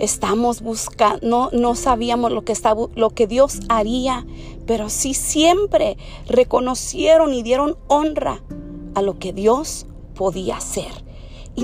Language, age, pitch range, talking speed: Spanish, 40-59, 210-280 Hz, 125 wpm